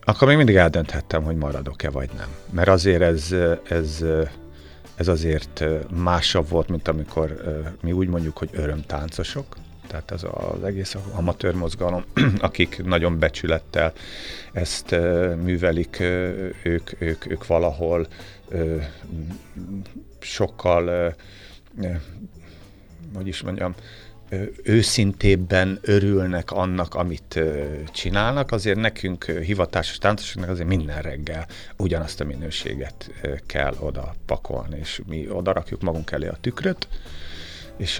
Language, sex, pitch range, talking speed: Hungarian, male, 80-95 Hz, 110 wpm